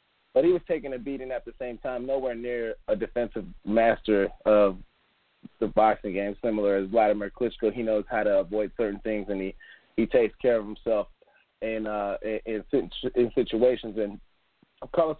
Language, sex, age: English, male, 20-39